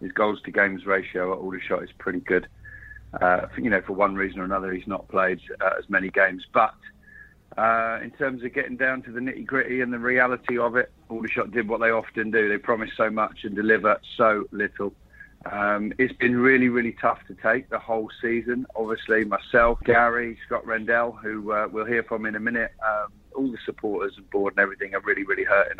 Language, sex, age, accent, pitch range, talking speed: English, male, 40-59, British, 100-120 Hz, 210 wpm